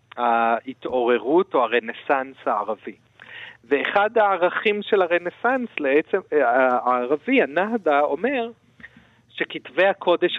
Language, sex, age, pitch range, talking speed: Hebrew, male, 40-59, 130-195 Hz, 75 wpm